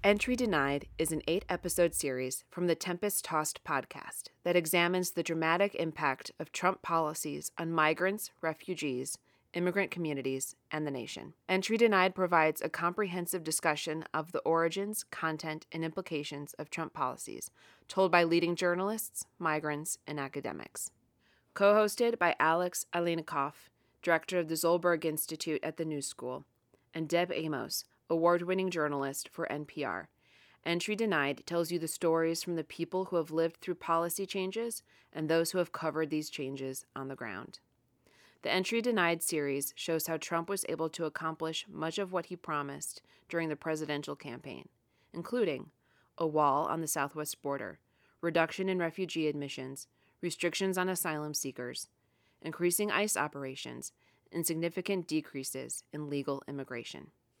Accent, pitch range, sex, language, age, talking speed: American, 145-180 Hz, female, English, 30-49, 145 wpm